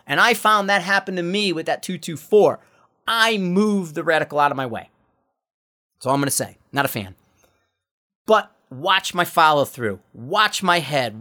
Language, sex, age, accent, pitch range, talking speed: English, male, 40-59, American, 150-205 Hz, 185 wpm